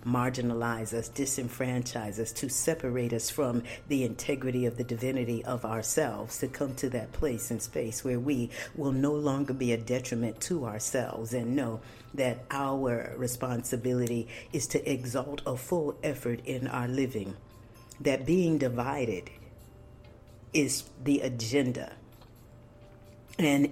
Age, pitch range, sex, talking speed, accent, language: 50-69, 115-135 Hz, female, 135 wpm, American, English